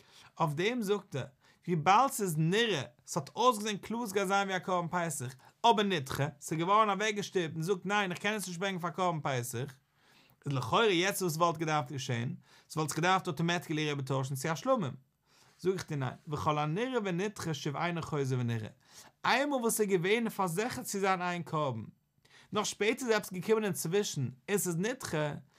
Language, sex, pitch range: English, male, 145-210 Hz